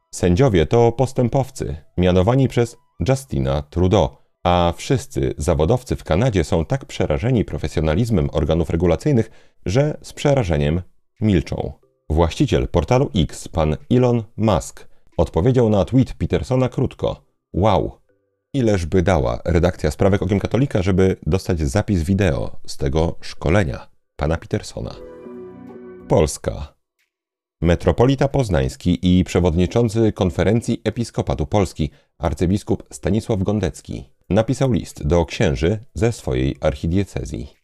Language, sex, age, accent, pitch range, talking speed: Polish, male, 40-59, native, 80-115 Hz, 110 wpm